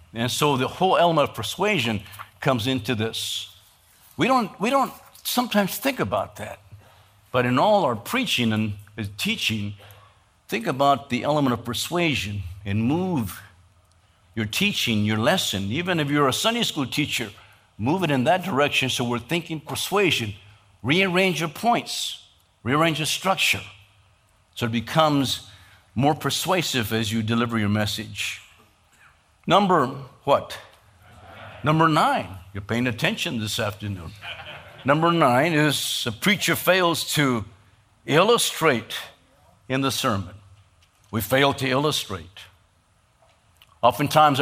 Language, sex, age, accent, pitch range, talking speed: English, male, 60-79, American, 105-150 Hz, 125 wpm